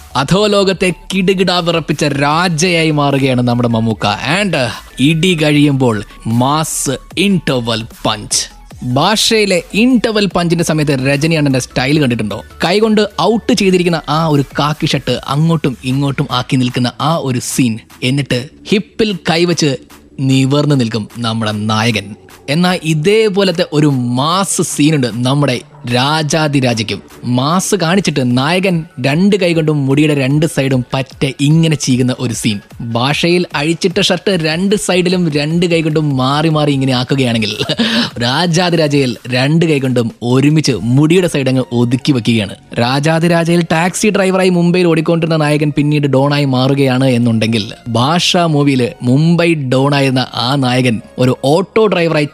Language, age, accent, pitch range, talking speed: Malayalam, 20-39, native, 125-170 Hz, 95 wpm